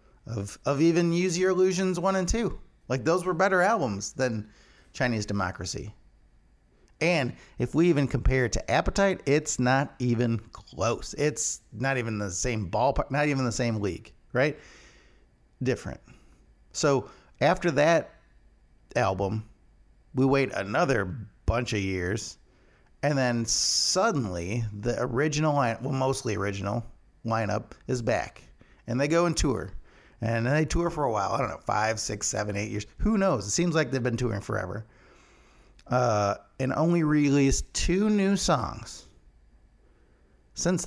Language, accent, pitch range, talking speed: English, American, 110-155 Hz, 145 wpm